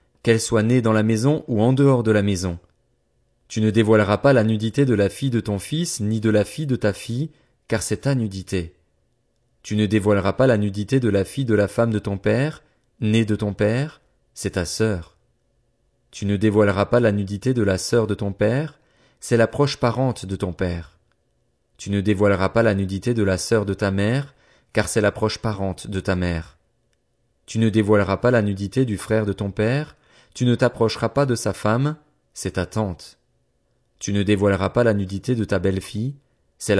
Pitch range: 100-120 Hz